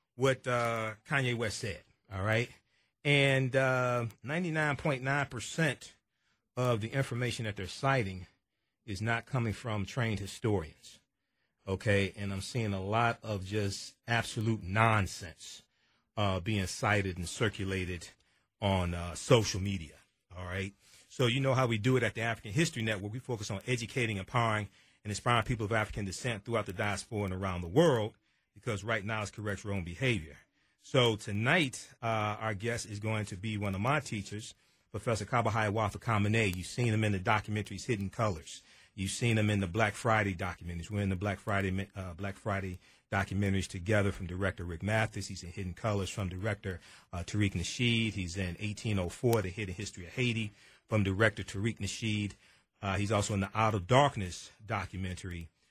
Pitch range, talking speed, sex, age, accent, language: 95-115 Hz, 170 wpm, male, 40-59, American, English